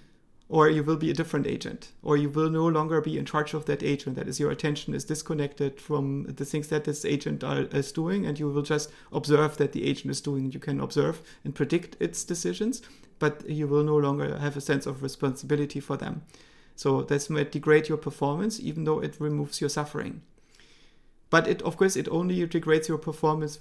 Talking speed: 205 wpm